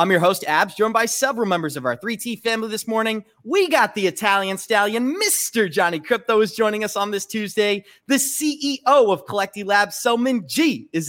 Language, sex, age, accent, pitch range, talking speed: English, male, 20-39, American, 185-230 Hz, 190 wpm